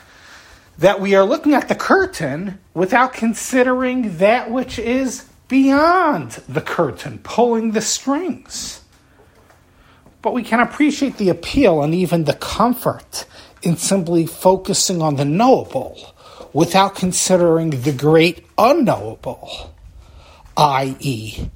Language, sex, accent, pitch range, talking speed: English, male, American, 130-215 Hz, 110 wpm